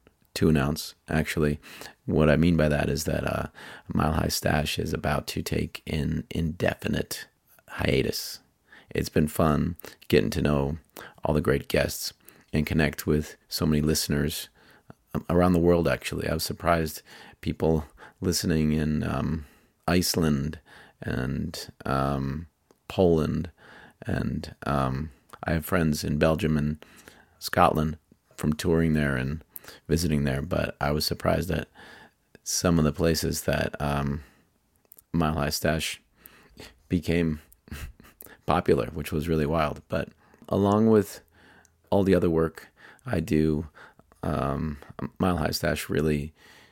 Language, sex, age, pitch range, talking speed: English, male, 40-59, 75-80 Hz, 130 wpm